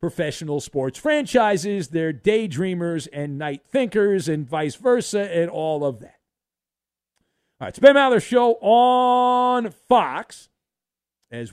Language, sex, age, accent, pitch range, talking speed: English, male, 50-69, American, 150-200 Hz, 130 wpm